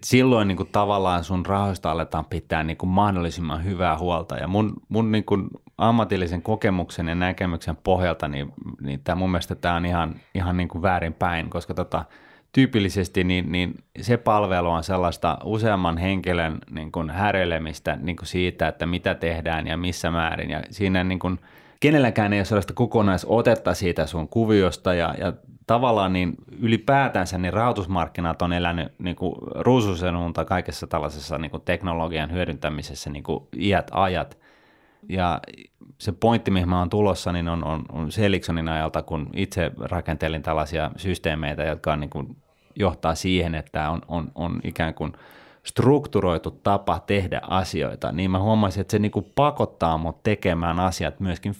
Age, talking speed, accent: 30-49, 160 wpm, native